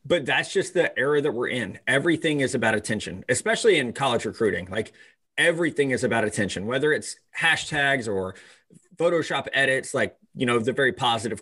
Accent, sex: American, male